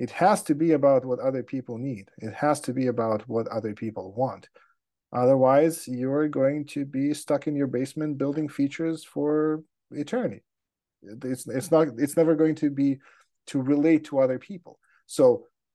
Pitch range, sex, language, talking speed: 115-145 Hz, male, English, 170 wpm